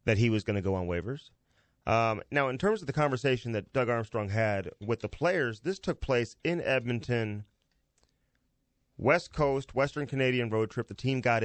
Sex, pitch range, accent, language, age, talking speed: male, 110-135 Hz, American, English, 30-49, 190 wpm